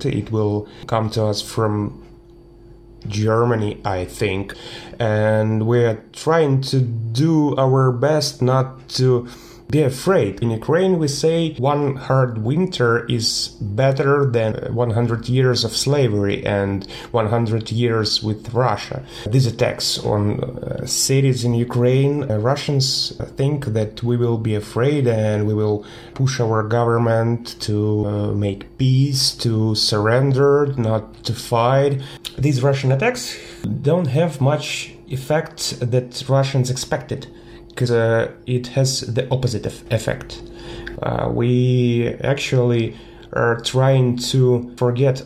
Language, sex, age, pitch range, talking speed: English, male, 30-49, 110-130 Hz, 125 wpm